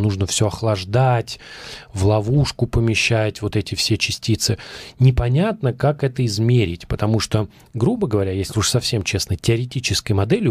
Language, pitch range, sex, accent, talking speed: Russian, 105-130 Hz, male, native, 135 wpm